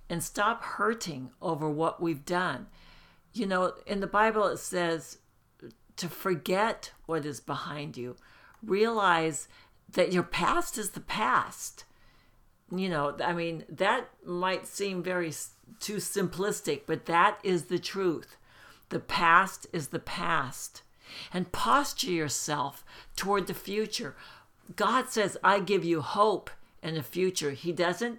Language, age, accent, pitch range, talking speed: English, 60-79, American, 160-195 Hz, 135 wpm